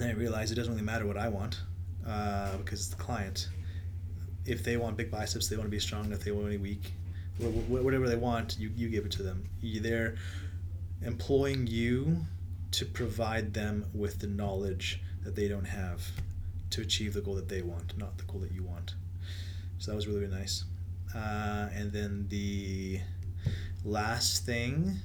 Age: 30-49